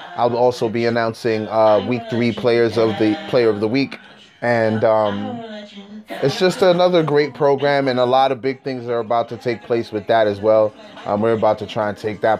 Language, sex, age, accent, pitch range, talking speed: English, male, 20-39, American, 115-135 Hz, 215 wpm